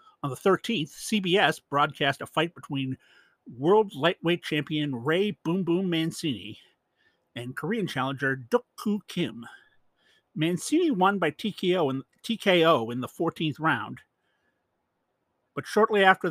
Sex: male